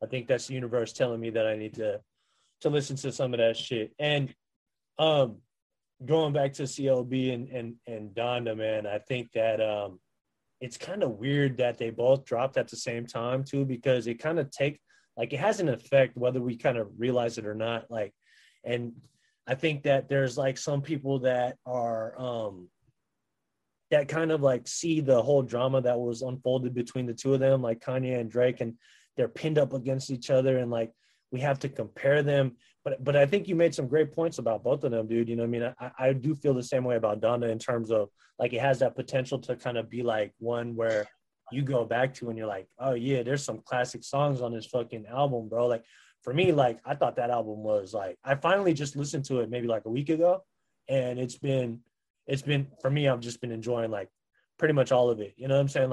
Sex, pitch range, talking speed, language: male, 120-140 Hz, 230 wpm, English